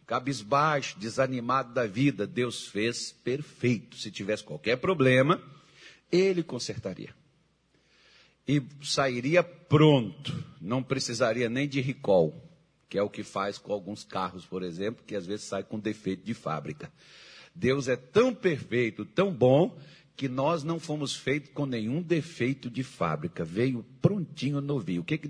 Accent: Brazilian